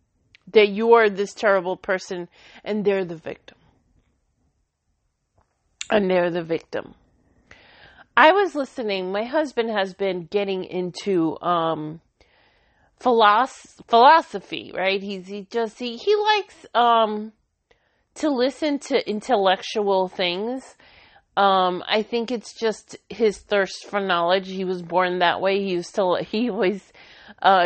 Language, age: English, 30-49